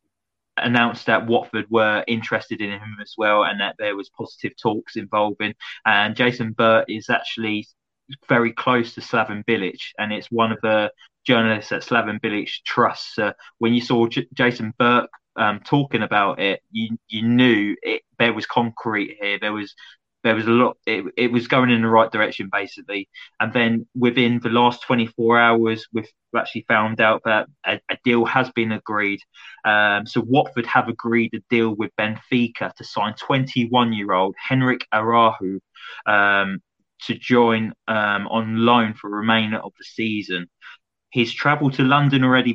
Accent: British